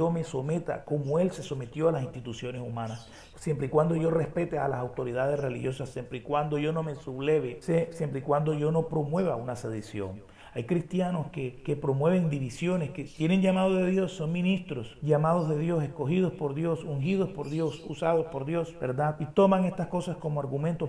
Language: Spanish